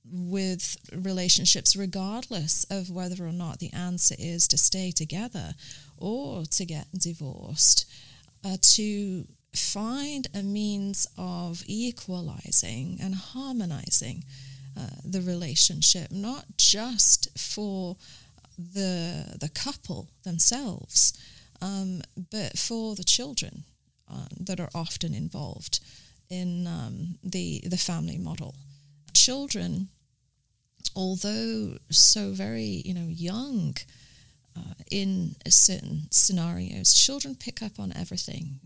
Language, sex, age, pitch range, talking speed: English, female, 30-49, 160-190 Hz, 105 wpm